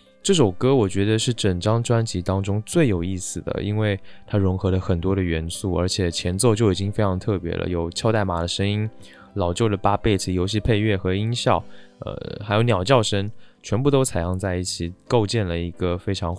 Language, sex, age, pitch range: Chinese, male, 20-39, 90-110 Hz